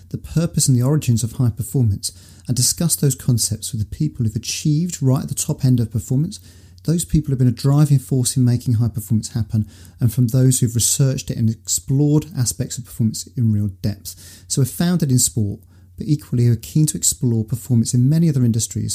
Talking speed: 210 wpm